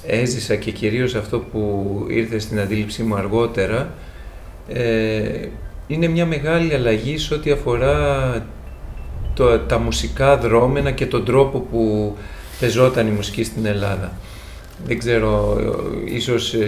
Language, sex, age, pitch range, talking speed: Greek, male, 40-59, 105-125 Hz, 120 wpm